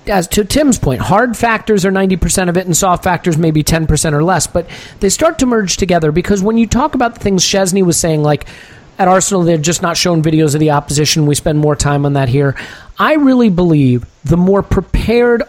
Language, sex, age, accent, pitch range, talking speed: English, male, 40-59, American, 150-210 Hz, 225 wpm